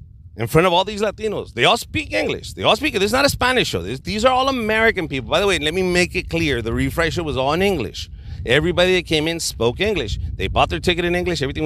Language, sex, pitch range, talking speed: English, male, 100-160 Hz, 270 wpm